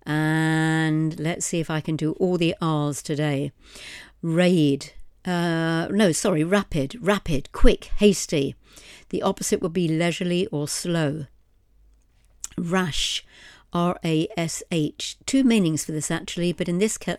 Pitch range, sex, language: 155-195 Hz, female, English